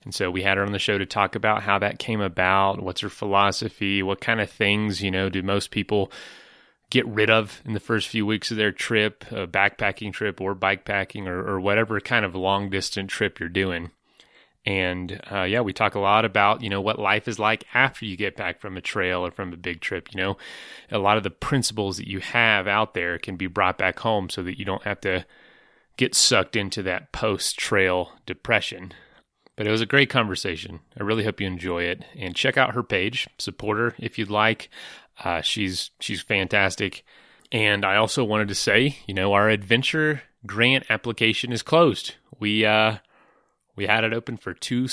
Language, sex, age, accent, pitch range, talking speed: English, male, 30-49, American, 95-110 Hz, 205 wpm